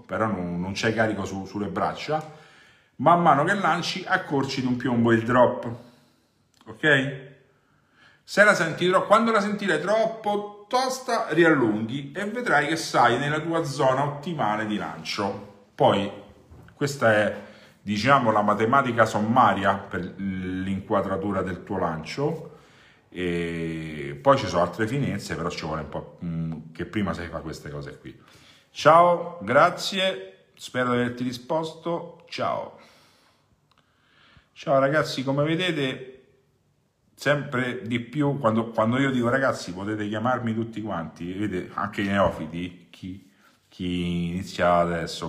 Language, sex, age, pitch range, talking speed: Italian, male, 50-69, 95-145 Hz, 130 wpm